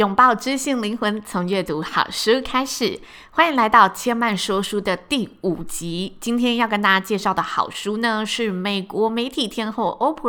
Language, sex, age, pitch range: Chinese, female, 20-39, 180-235 Hz